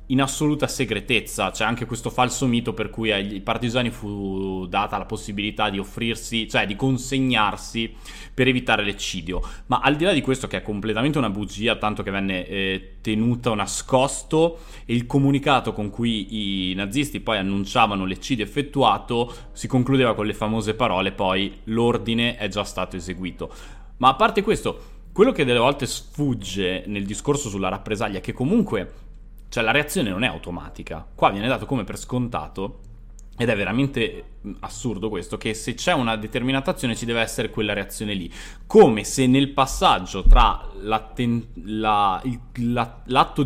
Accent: native